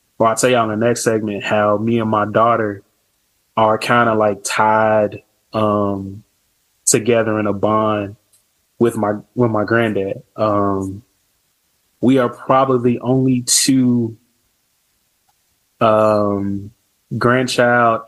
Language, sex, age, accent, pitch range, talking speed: English, male, 20-39, American, 105-120 Hz, 120 wpm